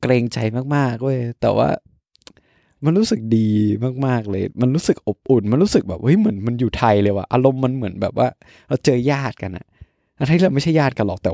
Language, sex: Thai, male